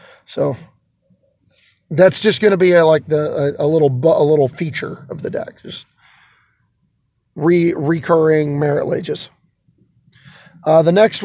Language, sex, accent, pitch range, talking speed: English, male, American, 155-190 Hz, 140 wpm